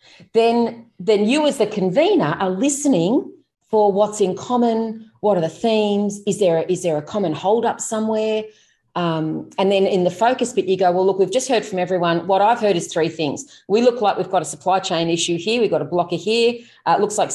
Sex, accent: female, Australian